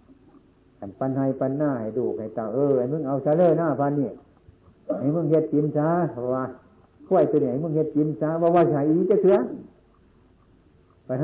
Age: 60-79